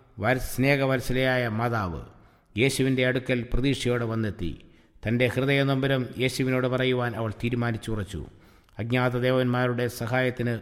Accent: Indian